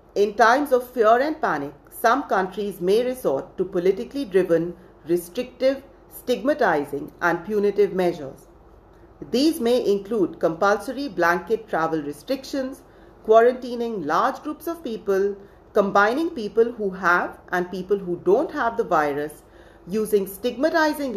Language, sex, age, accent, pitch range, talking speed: English, female, 40-59, Indian, 185-255 Hz, 120 wpm